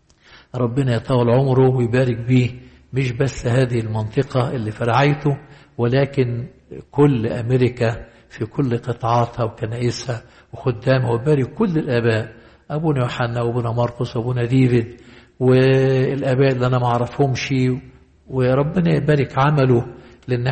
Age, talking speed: 60-79, 110 wpm